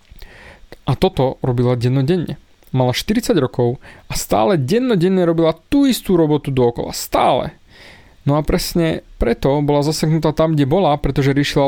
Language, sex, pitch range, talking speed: Slovak, male, 130-170 Hz, 140 wpm